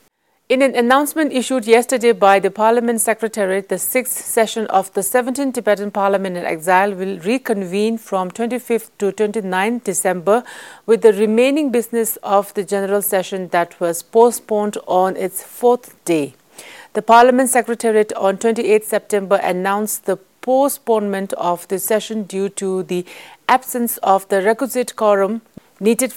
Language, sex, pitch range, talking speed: English, female, 190-235 Hz, 140 wpm